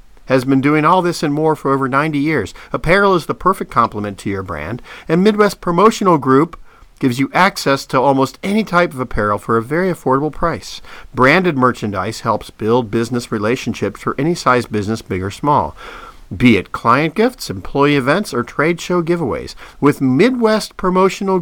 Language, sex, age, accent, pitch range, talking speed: English, male, 50-69, American, 130-175 Hz, 175 wpm